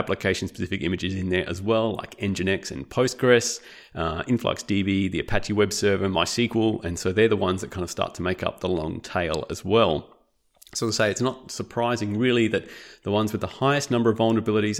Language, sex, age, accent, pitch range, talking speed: English, male, 30-49, Australian, 95-115 Hz, 205 wpm